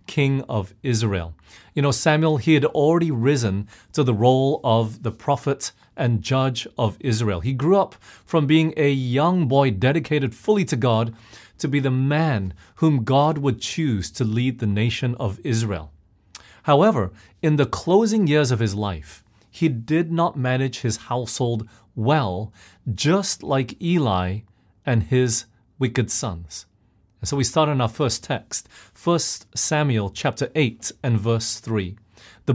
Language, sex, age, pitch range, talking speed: English, male, 30-49, 110-155 Hz, 155 wpm